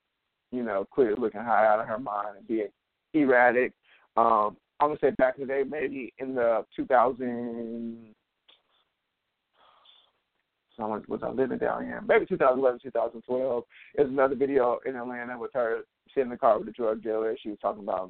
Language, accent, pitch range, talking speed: English, American, 115-140 Hz, 170 wpm